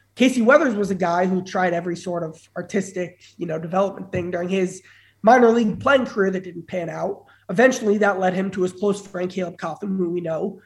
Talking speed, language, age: 215 wpm, English, 20-39